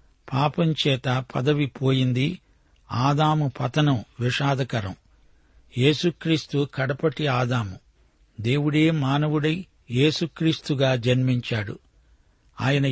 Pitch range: 125-150 Hz